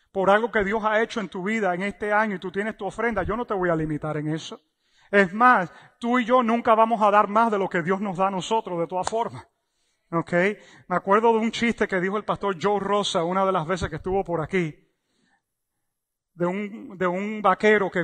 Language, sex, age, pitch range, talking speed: English, male, 30-49, 170-200 Hz, 235 wpm